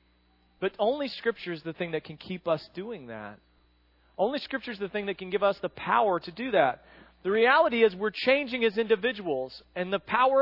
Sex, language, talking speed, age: male, English, 205 wpm, 40-59